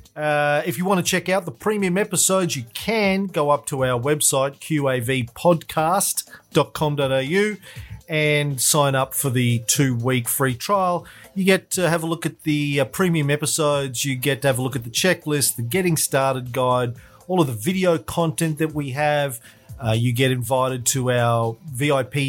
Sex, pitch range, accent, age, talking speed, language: male, 125-160 Hz, Australian, 40-59, 175 wpm, English